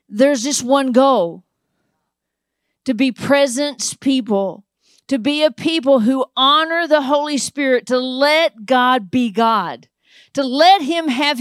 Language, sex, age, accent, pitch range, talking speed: English, female, 40-59, American, 260-335 Hz, 135 wpm